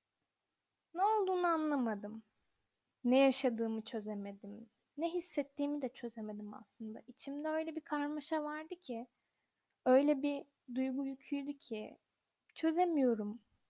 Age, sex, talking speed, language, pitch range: 10-29, female, 100 wpm, Turkish, 225-290 Hz